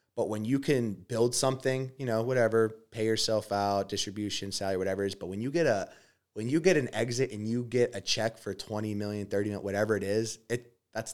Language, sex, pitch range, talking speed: English, male, 100-120 Hz, 225 wpm